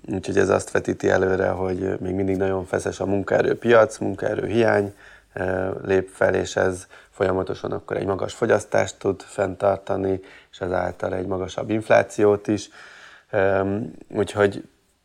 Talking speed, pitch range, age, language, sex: 125 wpm, 95-110 Hz, 20-39, Hungarian, male